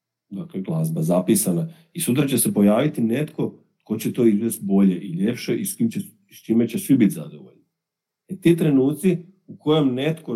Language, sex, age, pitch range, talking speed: Croatian, male, 40-59, 100-165 Hz, 180 wpm